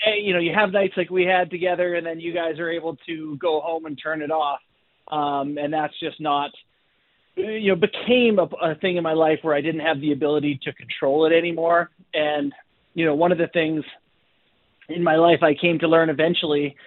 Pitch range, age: 145-170 Hz, 30-49